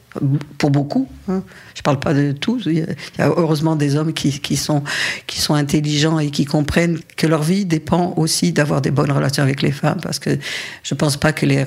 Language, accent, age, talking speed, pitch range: French, French, 50-69, 225 wpm, 140-165 Hz